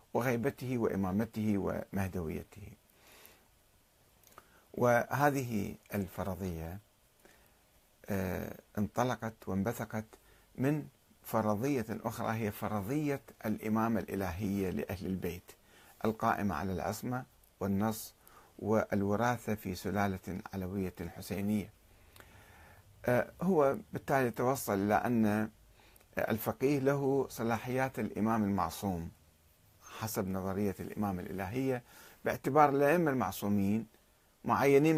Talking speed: 70 wpm